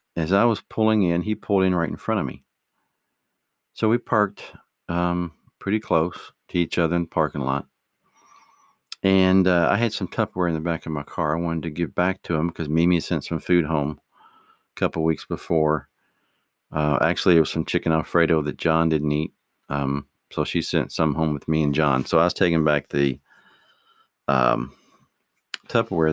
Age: 50-69